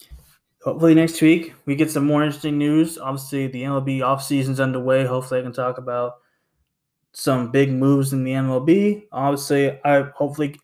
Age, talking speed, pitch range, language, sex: 20-39, 160 wpm, 135-155 Hz, English, male